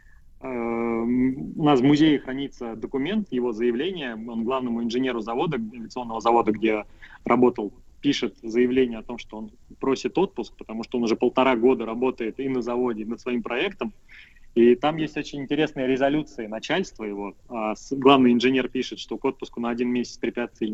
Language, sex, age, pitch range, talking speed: Russian, male, 20-39, 115-135 Hz, 165 wpm